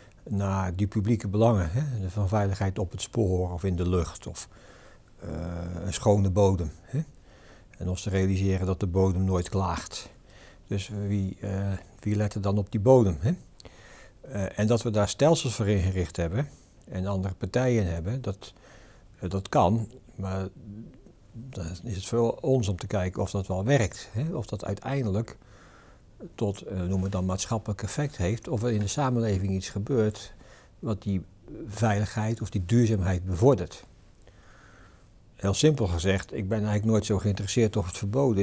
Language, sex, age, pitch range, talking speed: Dutch, male, 60-79, 95-115 Hz, 165 wpm